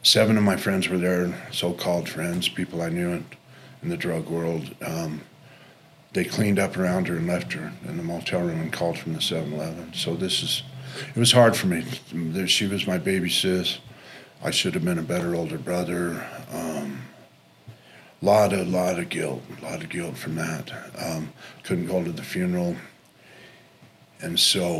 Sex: male